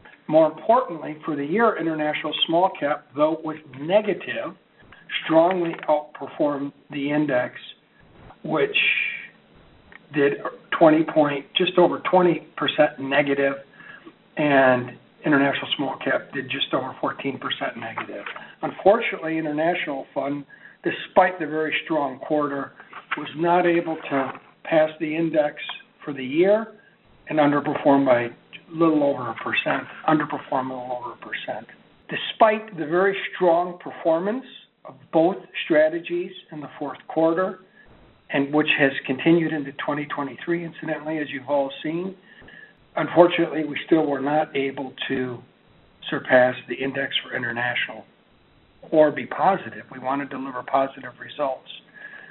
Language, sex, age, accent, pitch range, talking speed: English, male, 60-79, American, 140-170 Hz, 125 wpm